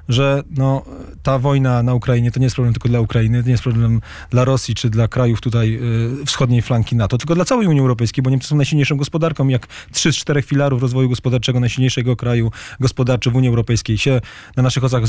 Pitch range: 115-135 Hz